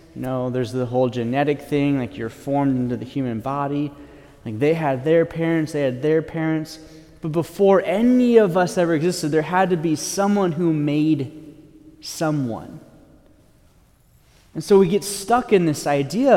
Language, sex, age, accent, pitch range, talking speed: English, male, 30-49, American, 135-170 Hz, 165 wpm